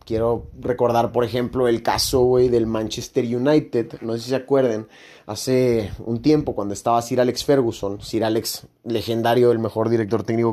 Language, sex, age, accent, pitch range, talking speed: Spanish, male, 30-49, Mexican, 110-135 Hz, 165 wpm